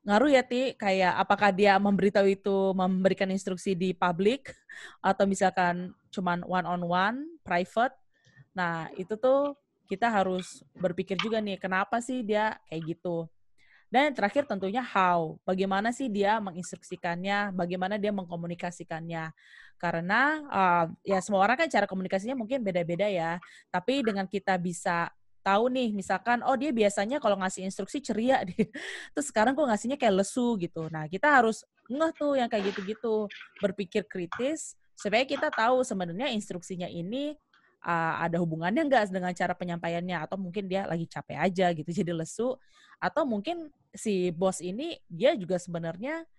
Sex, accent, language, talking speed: female, native, Indonesian, 150 wpm